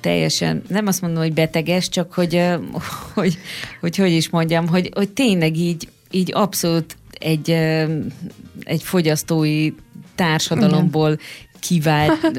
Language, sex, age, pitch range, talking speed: Hungarian, female, 20-39, 155-180 Hz, 120 wpm